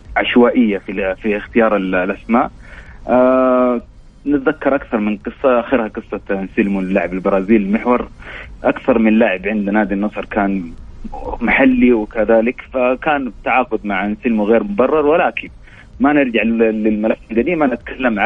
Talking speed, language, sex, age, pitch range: 125 wpm, Arabic, male, 30-49, 100-125 Hz